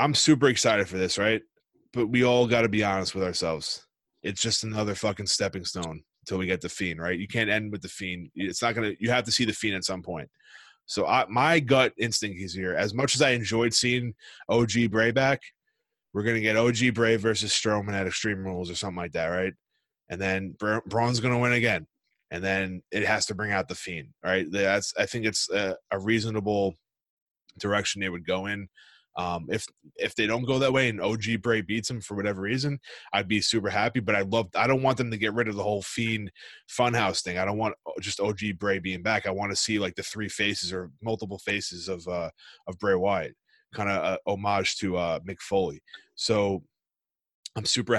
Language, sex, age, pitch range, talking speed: English, male, 20-39, 95-115 Hz, 220 wpm